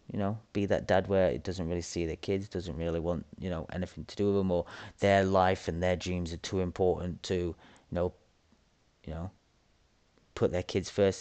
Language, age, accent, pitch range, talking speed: English, 30-49, British, 90-110 Hz, 215 wpm